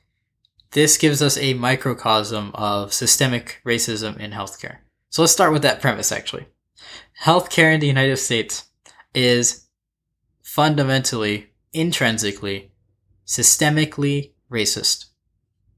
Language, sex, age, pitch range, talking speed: English, male, 10-29, 110-140 Hz, 105 wpm